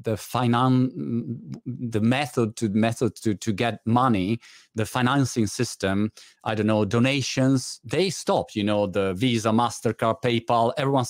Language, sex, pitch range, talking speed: Italian, male, 105-145 Hz, 140 wpm